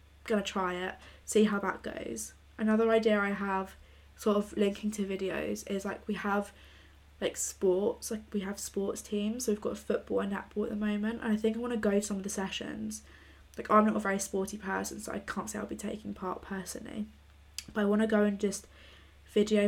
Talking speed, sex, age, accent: 225 wpm, female, 10-29, British